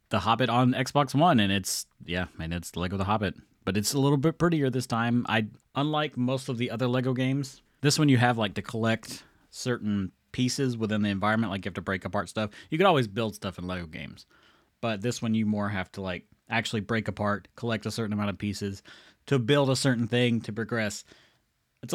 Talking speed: 220 wpm